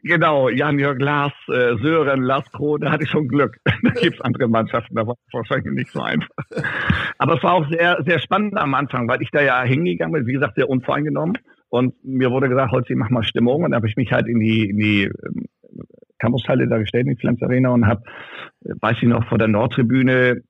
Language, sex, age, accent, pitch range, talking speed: German, male, 50-69, German, 115-140 Hz, 210 wpm